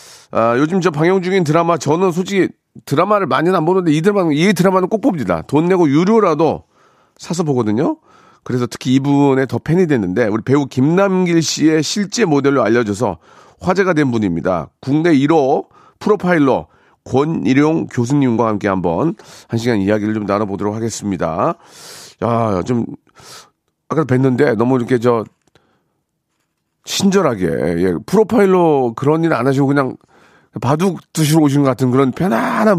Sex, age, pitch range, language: male, 40-59, 120-180 Hz, Korean